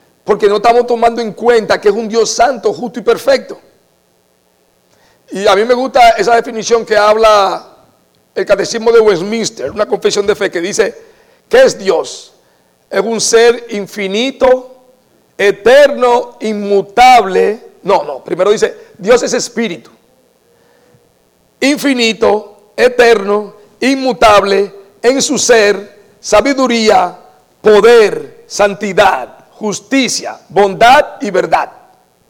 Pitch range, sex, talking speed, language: 200-265 Hz, male, 115 wpm, English